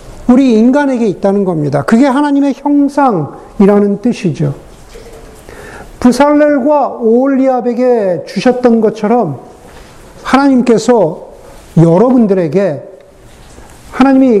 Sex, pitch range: male, 195-270 Hz